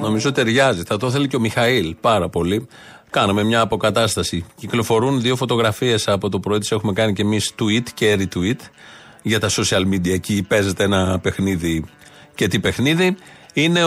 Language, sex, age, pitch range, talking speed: Greek, male, 40-59, 105-140 Hz, 170 wpm